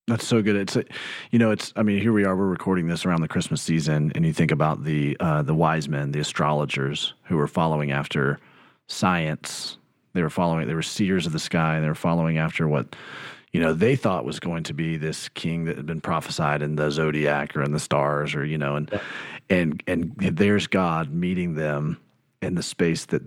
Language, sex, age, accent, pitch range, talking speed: English, male, 40-59, American, 75-95 Hz, 220 wpm